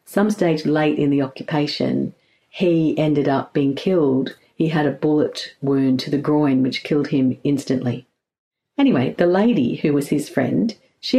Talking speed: 165 wpm